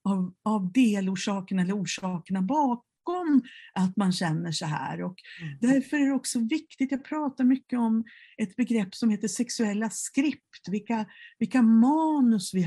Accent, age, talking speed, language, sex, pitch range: native, 50-69, 140 wpm, Swedish, female, 190-245 Hz